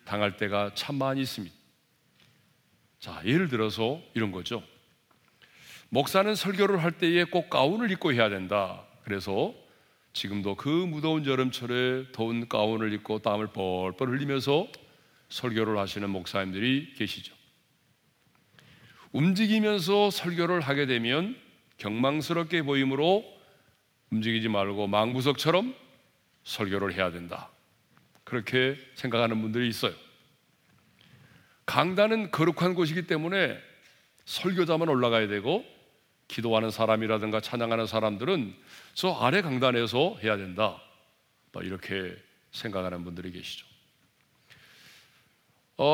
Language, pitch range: Korean, 105-150 Hz